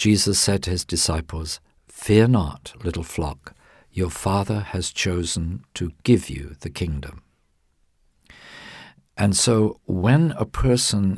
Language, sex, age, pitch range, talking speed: English, male, 50-69, 80-105 Hz, 125 wpm